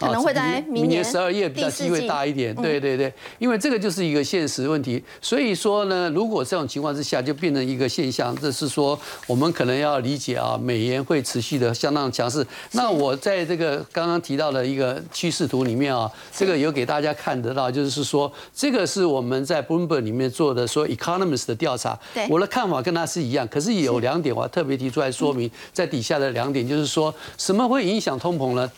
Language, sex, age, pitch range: Chinese, male, 50-69, 135-180 Hz